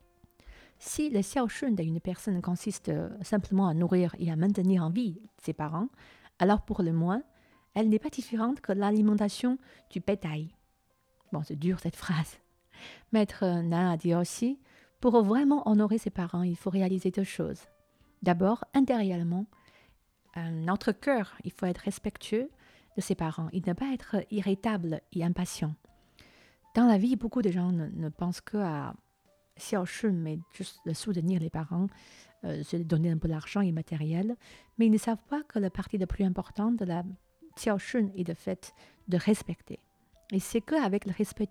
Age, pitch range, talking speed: 50-69, 170-215 Hz, 170 wpm